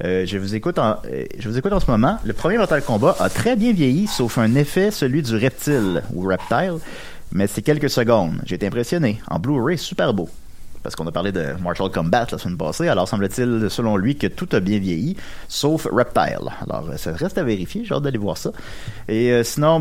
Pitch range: 95-120 Hz